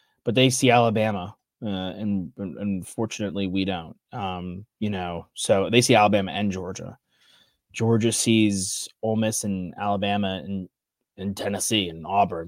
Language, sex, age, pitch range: English, male, 20-39, 95-115 Hz